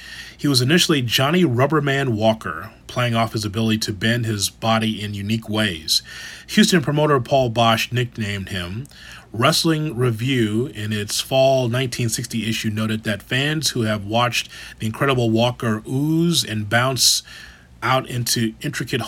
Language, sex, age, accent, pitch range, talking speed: English, male, 30-49, American, 110-130 Hz, 140 wpm